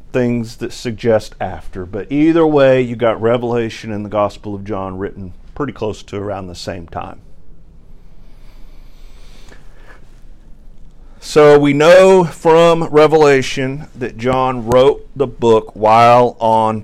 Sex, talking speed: male, 125 wpm